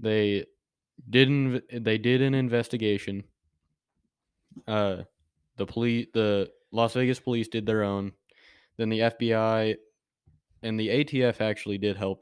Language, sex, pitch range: English, male, 100-120 Hz